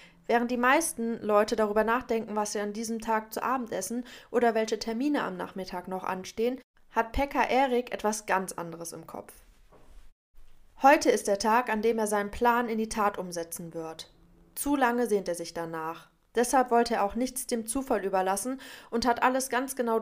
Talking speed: 185 wpm